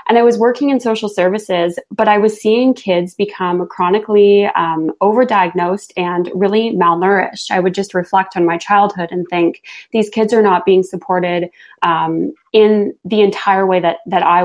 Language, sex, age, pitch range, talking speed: English, female, 20-39, 175-205 Hz, 175 wpm